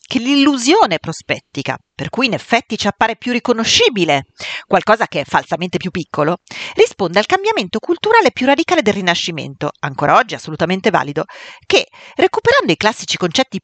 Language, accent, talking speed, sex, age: Italian, native, 150 wpm, female, 40-59